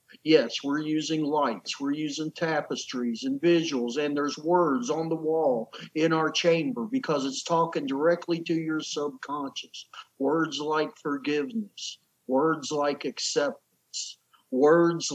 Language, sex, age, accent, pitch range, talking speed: English, male, 50-69, American, 150-230 Hz, 125 wpm